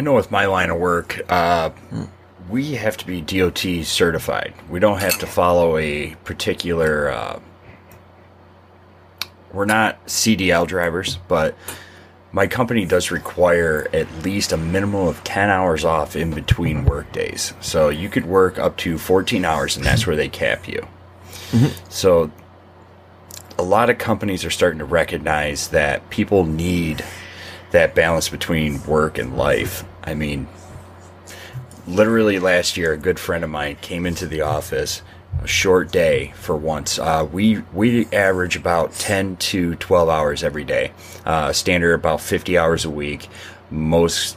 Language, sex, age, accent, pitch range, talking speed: English, male, 30-49, American, 85-95 Hz, 155 wpm